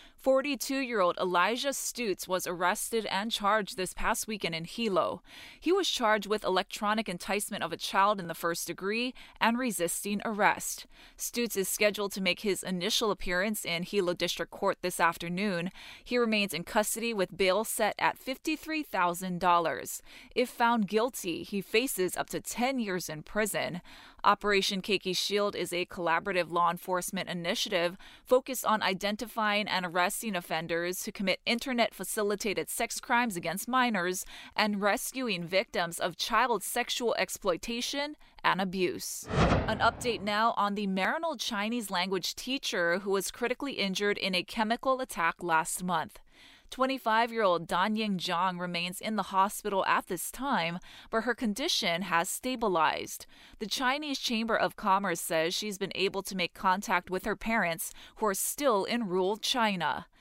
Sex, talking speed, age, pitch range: female, 150 wpm, 20-39, 180-230 Hz